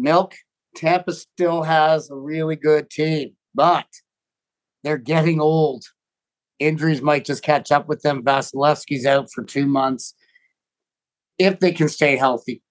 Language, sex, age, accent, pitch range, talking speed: English, male, 50-69, American, 140-165 Hz, 135 wpm